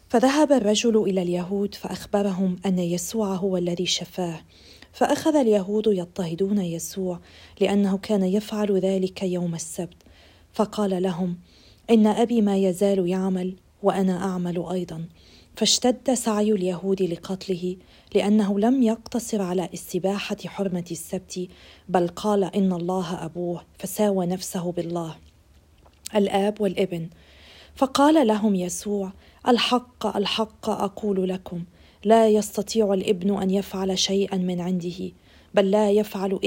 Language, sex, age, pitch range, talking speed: Arabic, female, 40-59, 180-210 Hz, 115 wpm